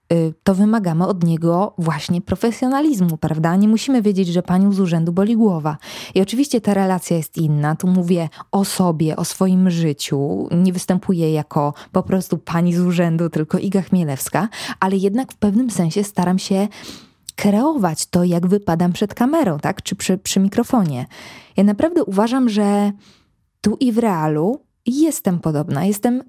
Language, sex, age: Polish, female, 20-39